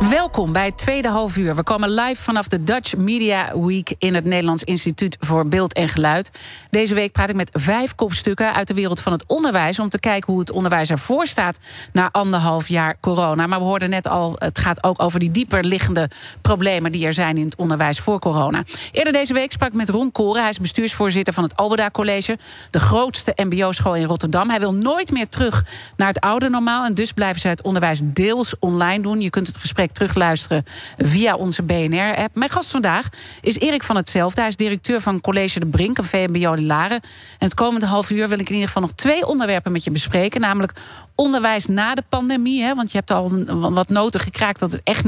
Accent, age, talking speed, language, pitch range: Dutch, 40-59, 215 wpm, Dutch, 180-220 Hz